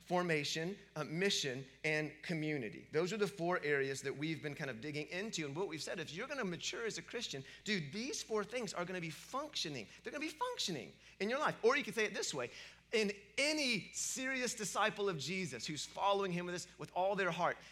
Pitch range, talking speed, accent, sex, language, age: 155-205 Hz, 220 wpm, American, male, English, 30-49